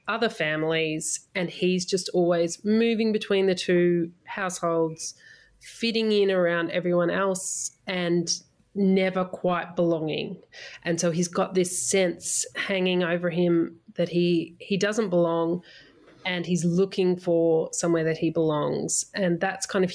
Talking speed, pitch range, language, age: 140 wpm, 165-190 Hz, English, 30-49